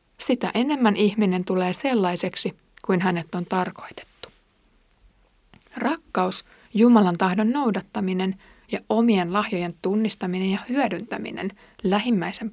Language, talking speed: Finnish, 95 wpm